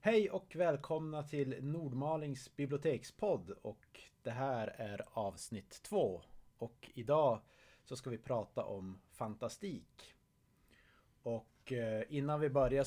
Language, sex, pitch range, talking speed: Swedish, male, 110-140 Hz, 110 wpm